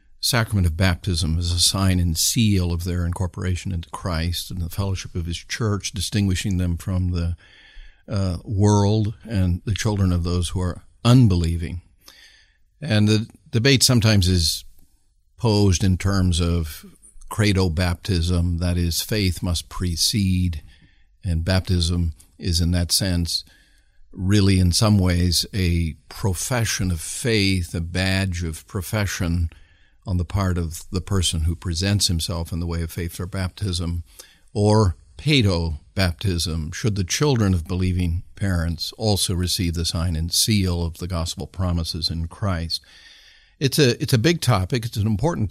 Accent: American